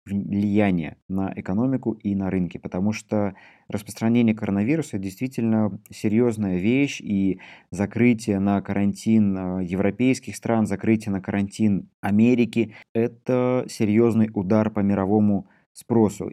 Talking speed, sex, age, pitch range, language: 105 wpm, male, 20-39, 100-125 Hz, Russian